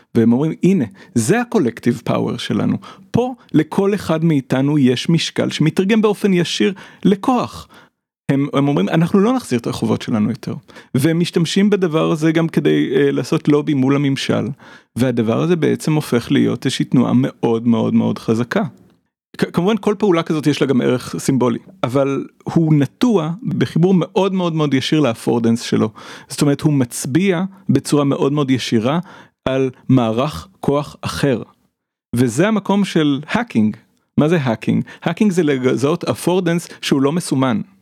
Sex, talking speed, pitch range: male, 150 wpm, 125-175 Hz